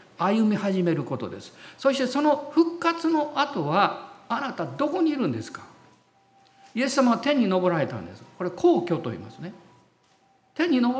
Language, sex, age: Japanese, male, 50-69